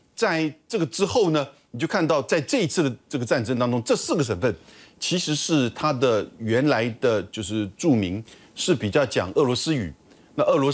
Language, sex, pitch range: Chinese, male, 135-195 Hz